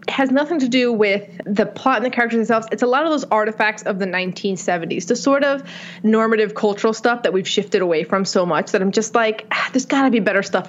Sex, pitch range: female, 185-240 Hz